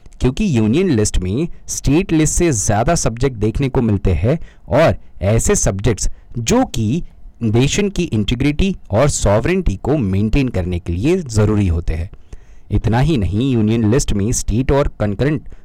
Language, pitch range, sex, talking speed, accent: Hindi, 95-140 Hz, male, 155 wpm, native